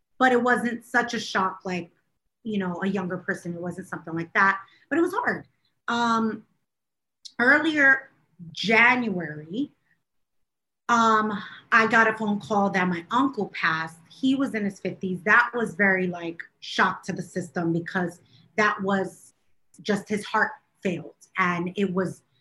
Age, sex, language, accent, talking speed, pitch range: 30-49, female, English, American, 155 wpm, 185-225 Hz